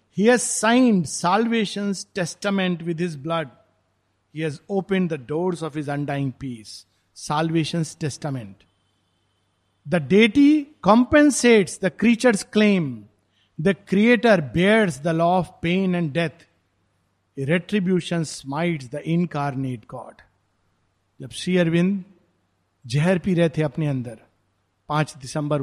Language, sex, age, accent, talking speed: Hindi, male, 50-69, native, 115 wpm